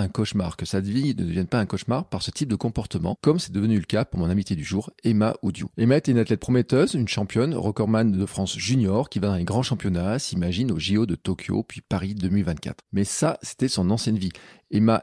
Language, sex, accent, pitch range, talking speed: French, male, French, 100-130 Hz, 235 wpm